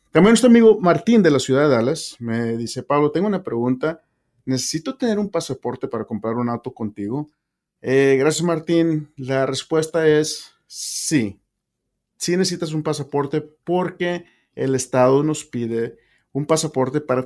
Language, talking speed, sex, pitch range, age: English, 150 wpm, male, 120-155 Hz, 40-59